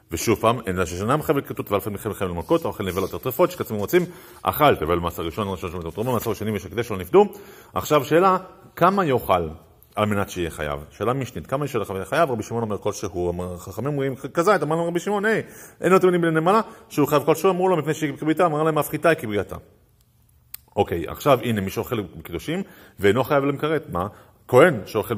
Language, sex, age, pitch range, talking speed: Hebrew, male, 40-59, 95-150 Hz, 165 wpm